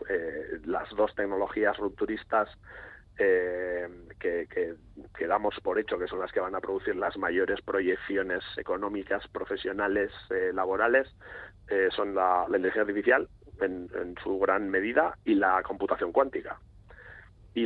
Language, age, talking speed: Spanish, 30-49, 140 wpm